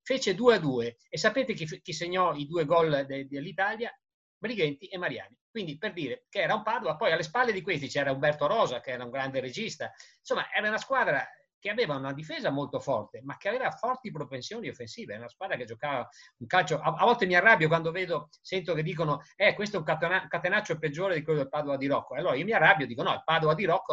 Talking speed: 230 wpm